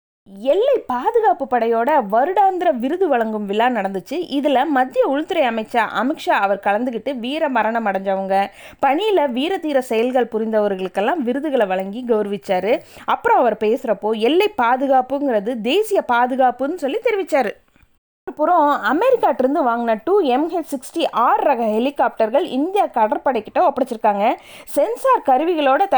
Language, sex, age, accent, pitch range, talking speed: Tamil, female, 20-39, native, 230-320 Hz, 115 wpm